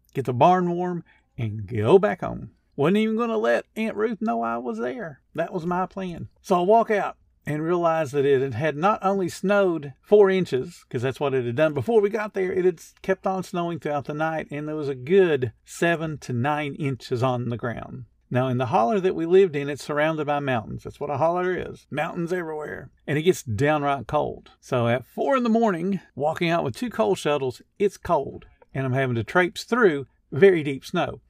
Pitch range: 125-180 Hz